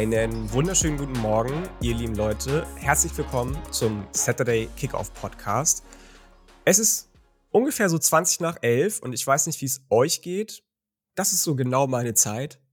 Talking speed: 160 wpm